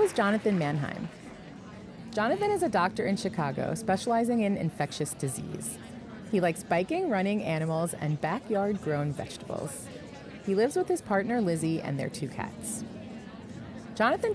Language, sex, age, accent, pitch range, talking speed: English, female, 30-49, American, 160-250 Hz, 140 wpm